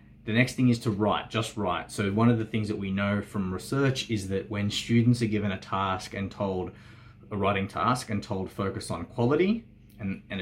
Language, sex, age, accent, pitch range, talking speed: English, male, 20-39, Australian, 95-115 Hz, 220 wpm